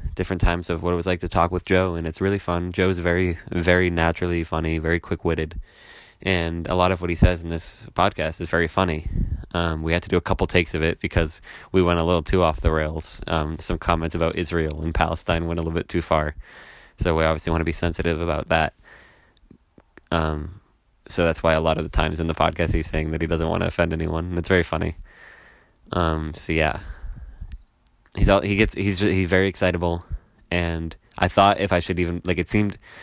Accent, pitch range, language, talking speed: American, 80-95 Hz, English, 225 wpm